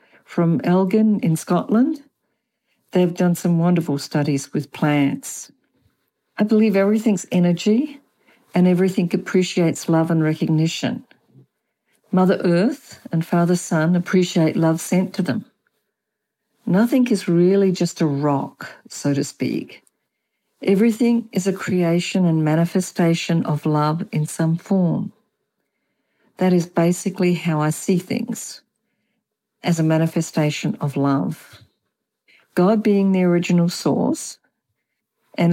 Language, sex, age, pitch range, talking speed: English, female, 60-79, 170-215 Hz, 115 wpm